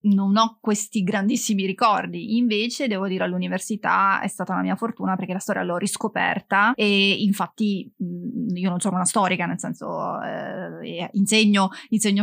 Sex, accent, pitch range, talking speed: female, native, 185-215 Hz, 145 wpm